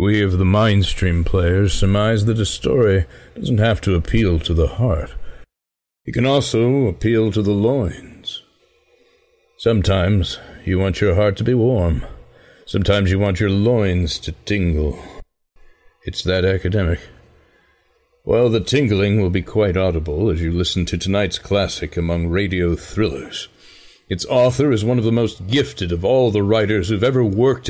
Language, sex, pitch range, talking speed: English, male, 85-110 Hz, 155 wpm